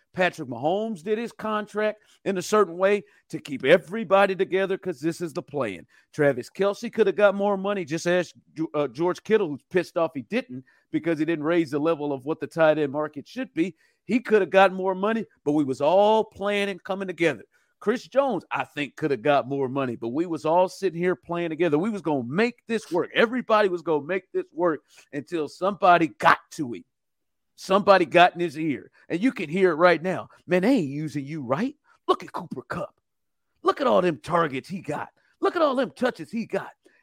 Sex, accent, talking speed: male, American, 215 wpm